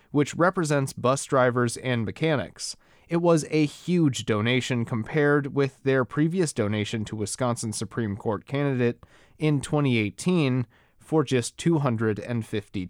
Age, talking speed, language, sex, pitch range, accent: 30-49, 105 wpm, English, male, 110-140 Hz, American